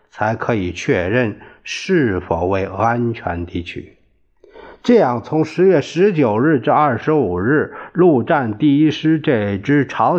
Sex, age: male, 50-69